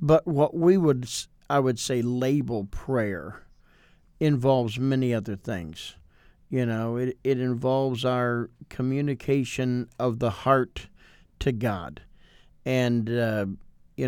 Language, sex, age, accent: English, male, 50-69, American